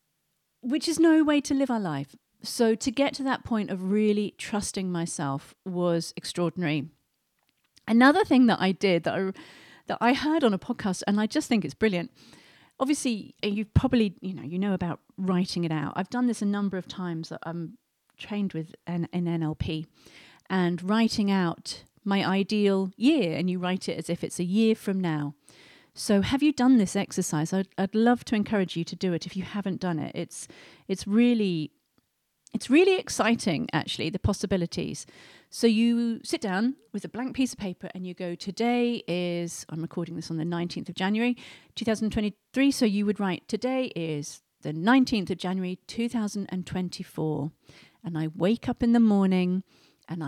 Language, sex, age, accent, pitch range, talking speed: English, female, 40-59, British, 175-230 Hz, 180 wpm